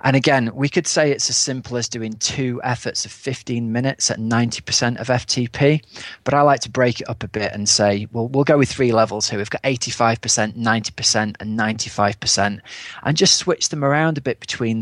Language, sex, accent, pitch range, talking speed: English, male, British, 105-125 Hz, 205 wpm